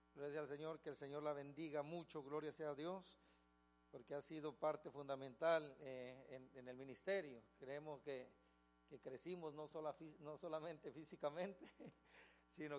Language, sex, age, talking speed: Spanish, male, 50-69, 150 wpm